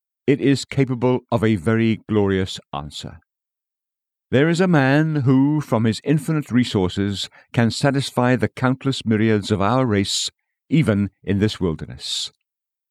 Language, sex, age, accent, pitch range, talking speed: English, male, 50-69, British, 100-140 Hz, 135 wpm